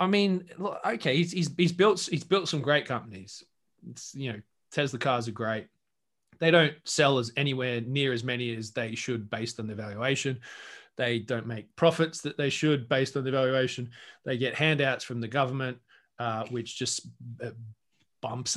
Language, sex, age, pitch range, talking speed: English, male, 20-39, 125-155 Hz, 180 wpm